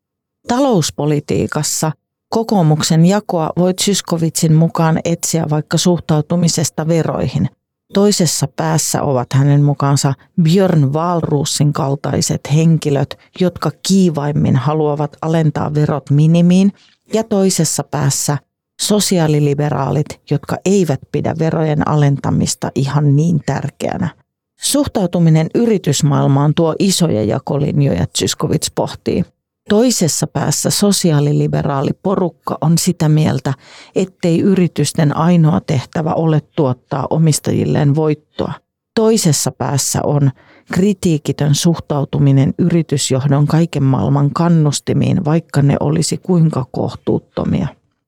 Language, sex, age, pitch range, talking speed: Finnish, female, 40-59, 145-170 Hz, 90 wpm